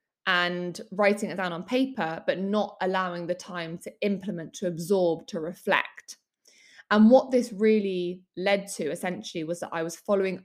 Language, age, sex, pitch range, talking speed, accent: English, 20-39, female, 180-215 Hz, 165 wpm, British